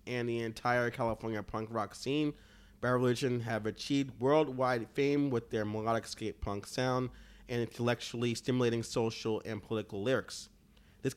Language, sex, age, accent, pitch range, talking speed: English, male, 30-49, American, 105-130 Hz, 140 wpm